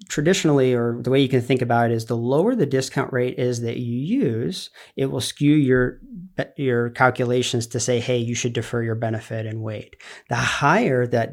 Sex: male